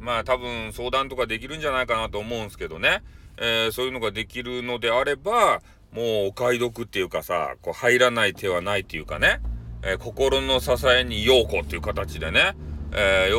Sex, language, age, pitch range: male, Japanese, 40-59, 100-135 Hz